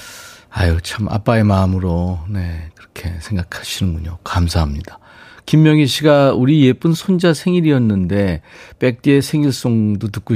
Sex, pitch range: male, 95-135 Hz